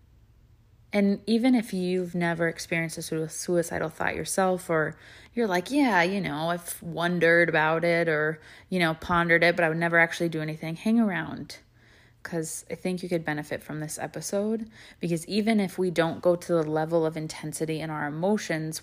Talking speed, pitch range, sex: 180 wpm, 155-185 Hz, female